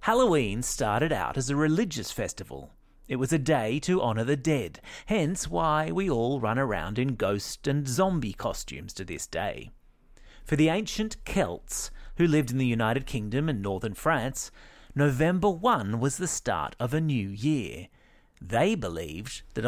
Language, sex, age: English, male, 30-49